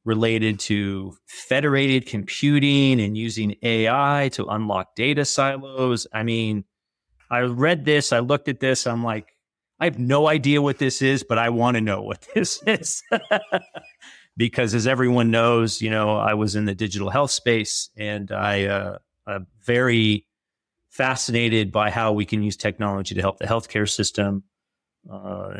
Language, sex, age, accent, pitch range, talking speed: English, male, 30-49, American, 105-130 Hz, 160 wpm